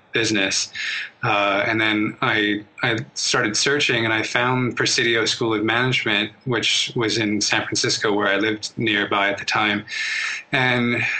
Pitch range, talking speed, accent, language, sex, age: 110-125 Hz, 150 wpm, American, English, male, 20-39